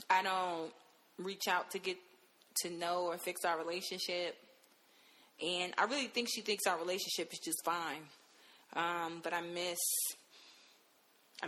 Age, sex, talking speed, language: 20-39, female, 145 wpm, English